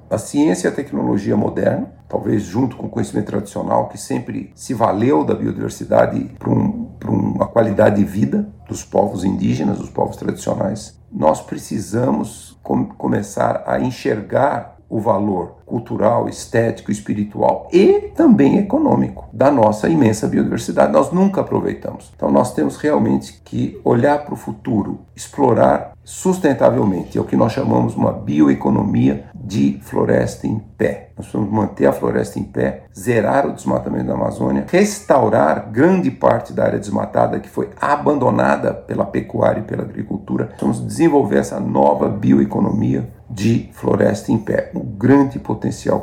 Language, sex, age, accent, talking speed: Portuguese, male, 50-69, Brazilian, 145 wpm